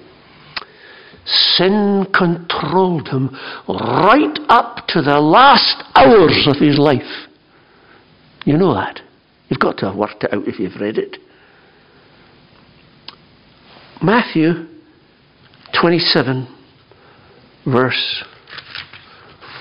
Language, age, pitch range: English, 60-79, 130-180 Hz